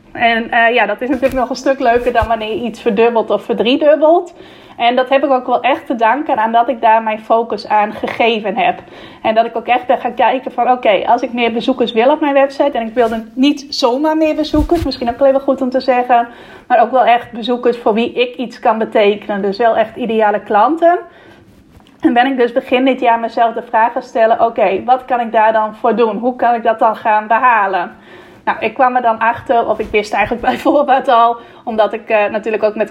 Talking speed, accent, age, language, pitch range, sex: 240 wpm, Dutch, 30-49, Dutch, 225-255 Hz, female